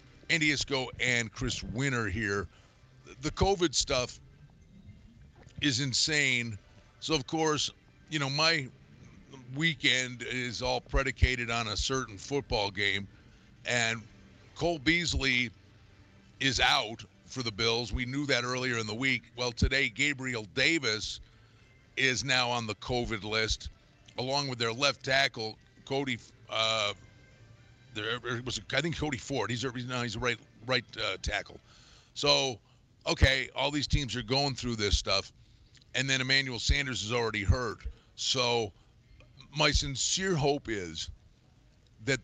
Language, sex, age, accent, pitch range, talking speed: English, male, 50-69, American, 110-135 Hz, 135 wpm